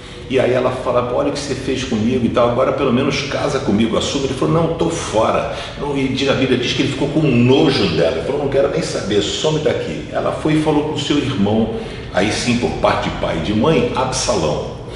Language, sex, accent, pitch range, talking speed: Portuguese, male, Brazilian, 95-150 Hz, 235 wpm